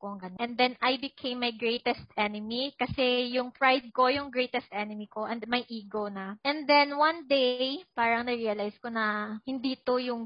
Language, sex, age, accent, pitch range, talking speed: Filipino, female, 20-39, native, 215-260 Hz, 175 wpm